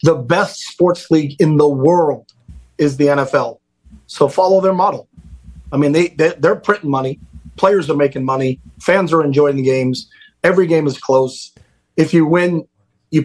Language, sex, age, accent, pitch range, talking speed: English, male, 40-59, American, 135-170 Hz, 175 wpm